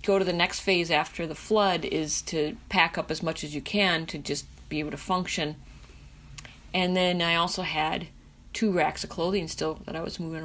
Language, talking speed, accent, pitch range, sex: English, 210 wpm, American, 160-195 Hz, female